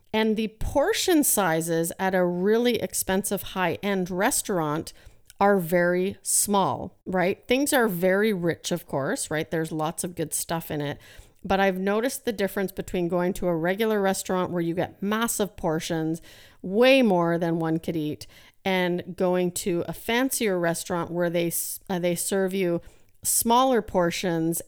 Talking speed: 155 wpm